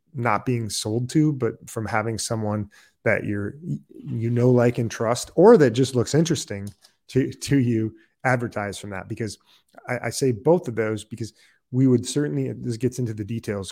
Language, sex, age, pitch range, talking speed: English, male, 30-49, 105-125 Hz, 185 wpm